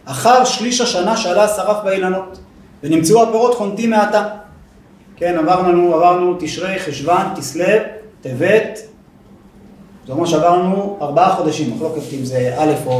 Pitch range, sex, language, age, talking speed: 165-220 Hz, male, Hebrew, 30-49, 135 wpm